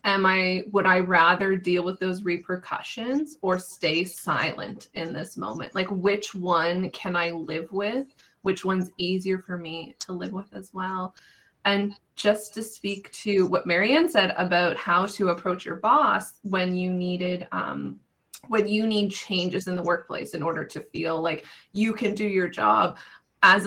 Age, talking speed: 20-39, 170 wpm